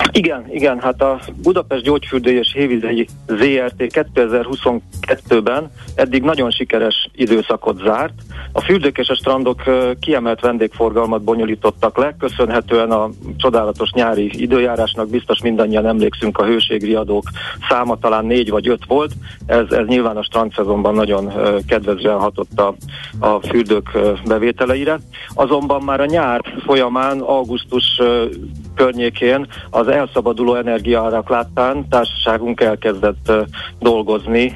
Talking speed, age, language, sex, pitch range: 115 wpm, 40-59, Hungarian, male, 105-125 Hz